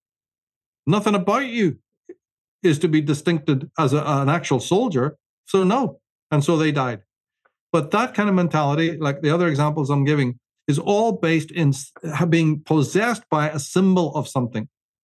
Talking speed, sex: 160 wpm, male